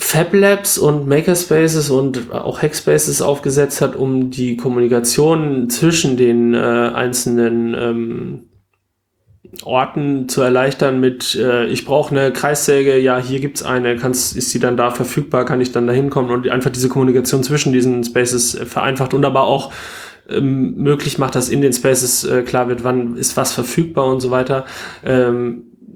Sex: male